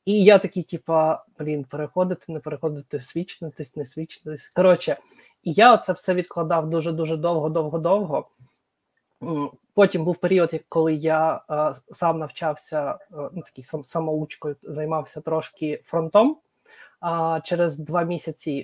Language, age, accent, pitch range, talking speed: Ukrainian, 20-39, native, 155-185 Hz, 120 wpm